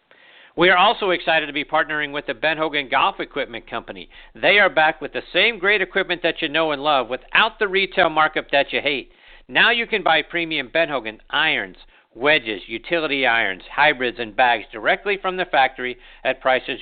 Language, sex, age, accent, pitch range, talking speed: English, male, 50-69, American, 120-165 Hz, 195 wpm